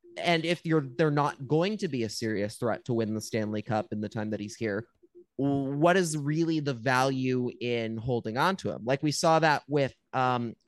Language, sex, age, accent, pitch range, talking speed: English, male, 20-39, American, 120-165 Hz, 215 wpm